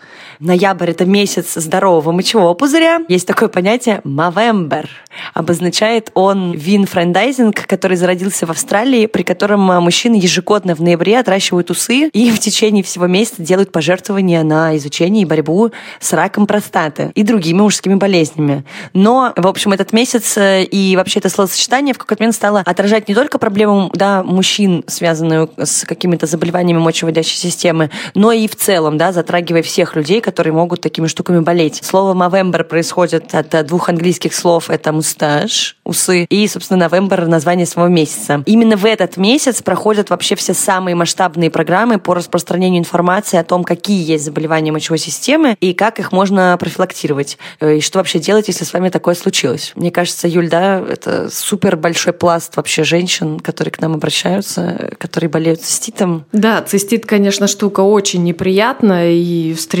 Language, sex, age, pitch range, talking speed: Russian, female, 20-39, 170-205 Hz, 155 wpm